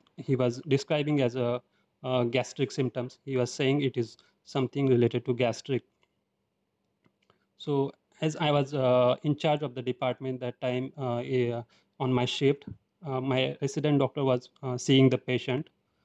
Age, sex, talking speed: 30-49, male, 160 wpm